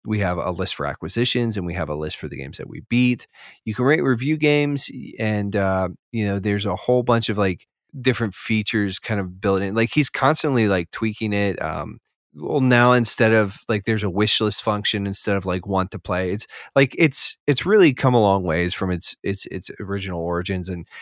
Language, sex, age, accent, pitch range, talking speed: English, male, 30-49, American, 95-120 Hz, 215 wpm